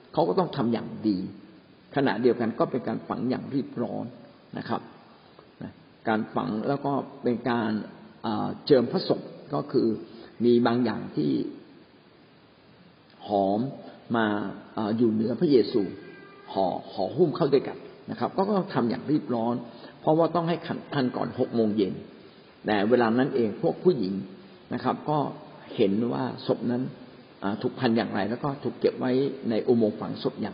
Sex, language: male, Thai